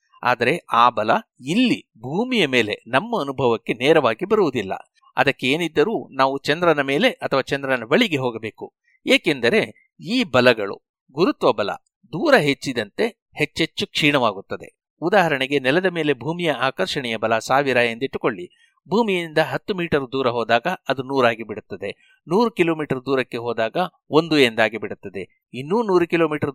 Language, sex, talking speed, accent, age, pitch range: Kannada, male, 120 wpm, native, 60-79, 130-185 Hz